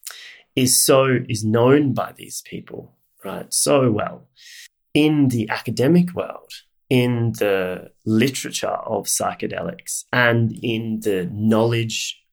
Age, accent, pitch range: 30-49, Australian, 95-130 Hz